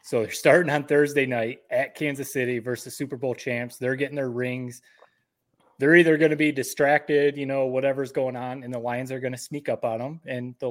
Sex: male